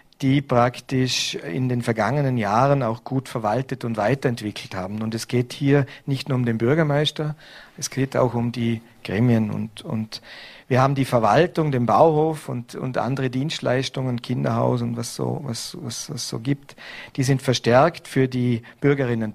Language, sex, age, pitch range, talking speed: German, male, 50-69, 120-145 Hz, 165 wpm